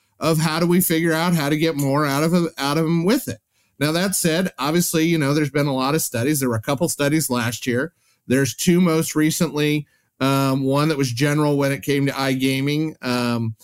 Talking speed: 225 wpm